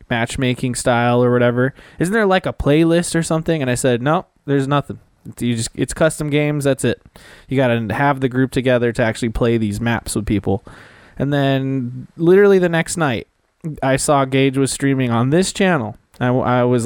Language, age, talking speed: English, 20-39, 195 wpm